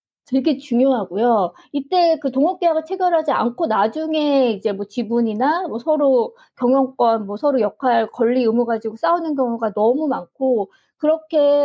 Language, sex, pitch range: Korean, female, 225-300 Hz